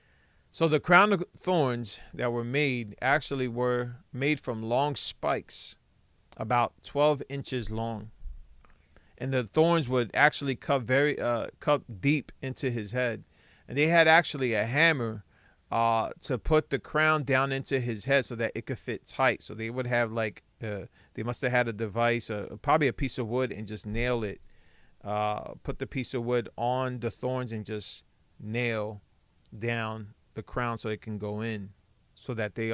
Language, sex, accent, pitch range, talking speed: English, male, American, 105-130 Hz, 175 wpm